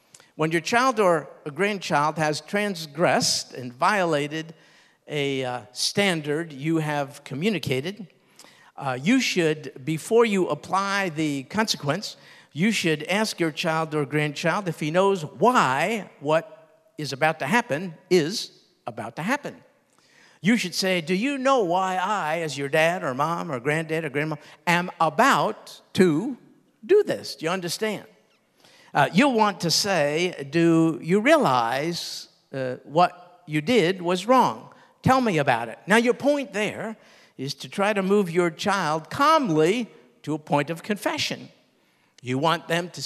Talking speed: 150 wpm